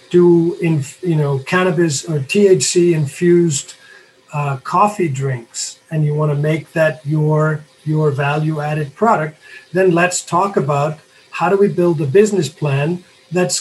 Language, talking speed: English, 135 wpm